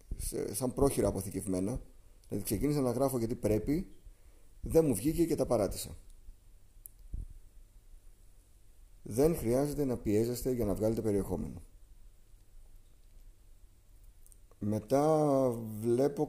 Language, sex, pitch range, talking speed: Greek, male, 95-130 Hz, 90 wpm